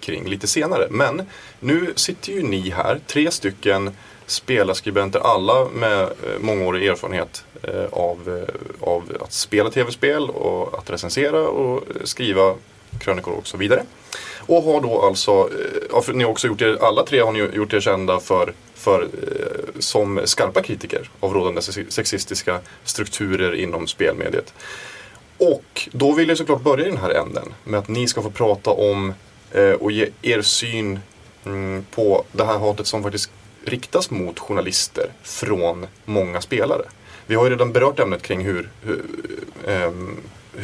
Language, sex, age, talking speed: Swedish, male, 20-39, 150 wpm